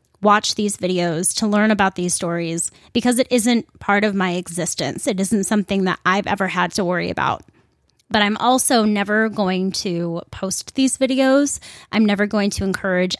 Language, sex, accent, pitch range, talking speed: English, female, American, 180-220 Hz, 175 wpm